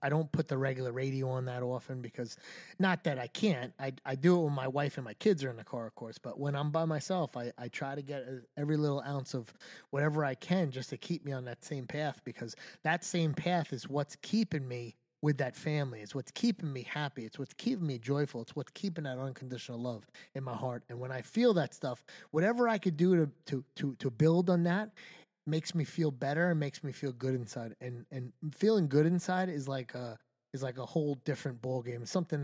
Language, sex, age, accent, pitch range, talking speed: English, male, 30-49, American, 125-160 Hz, 240 wpm